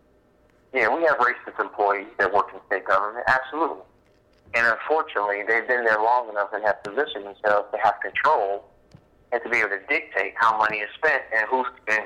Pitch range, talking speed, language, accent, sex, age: 100-120 Hz, 190 wpm, English, American, male, 50-69